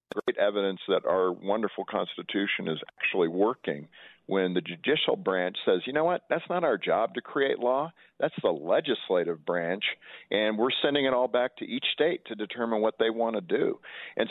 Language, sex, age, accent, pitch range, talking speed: English, male, 50-69, American, 100-120 Hz, 190 wpm